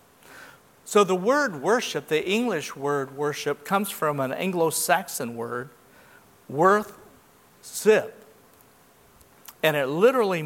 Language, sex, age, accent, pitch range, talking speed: English, male, 50-69, American, 140-195 Hz, 110 wpm